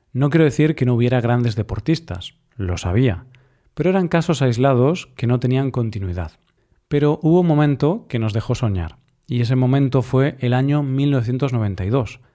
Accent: Spanish